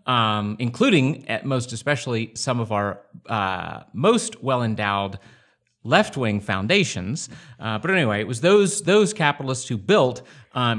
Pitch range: 110-150 Hz